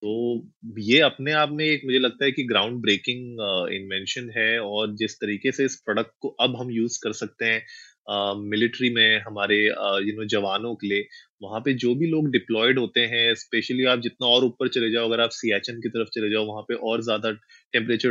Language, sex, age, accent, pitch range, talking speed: Hindi, male, 20-39, native, 110-130 Hz, 200 wpm